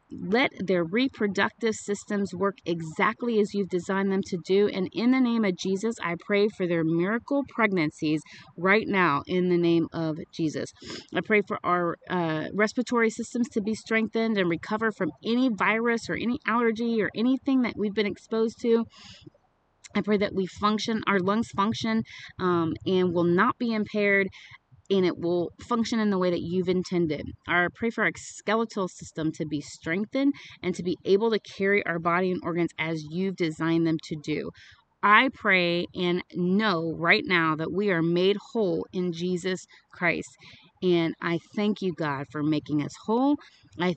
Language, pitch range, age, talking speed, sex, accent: English, 170-220 Hz, 30-49, 175 wpm, female, American